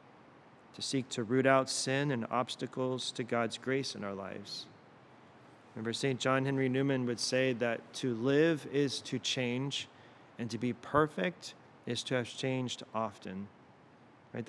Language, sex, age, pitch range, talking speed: English, male, 30-49, 120-145 Hz, 155 wpm